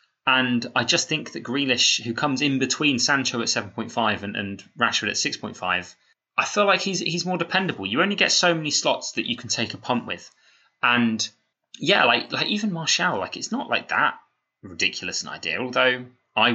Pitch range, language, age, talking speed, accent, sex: 105-135 Hz, English, 20-39, 195 wpm, British, male